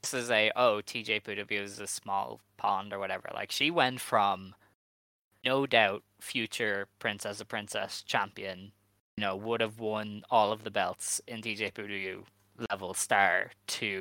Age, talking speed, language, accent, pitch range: 10-29, 155 wpm, English, Irish, 100-135 Hz